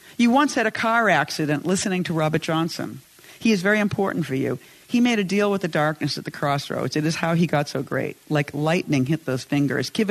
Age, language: 50-69, English